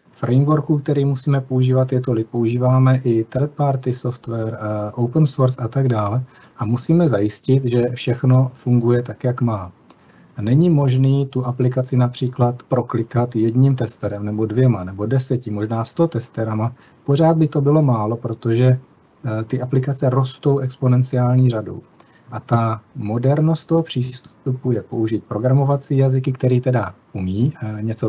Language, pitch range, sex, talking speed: Czech, 115-135 Hz, male, 140 wpm